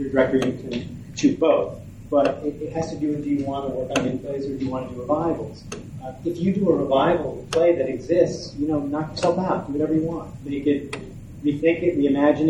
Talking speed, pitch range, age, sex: 245 wpm, 140-165 Hz, 30-49, male